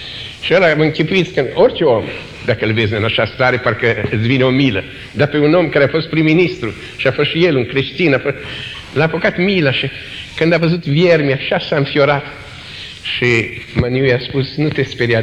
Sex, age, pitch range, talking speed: male, 50-69, 110-170 Hz, 205 wpm